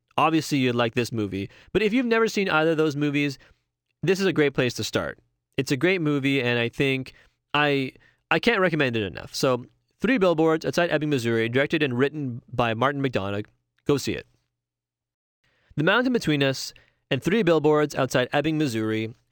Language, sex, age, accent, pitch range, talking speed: English, male, 30-49, American, 115-150 Hz, 185 wpm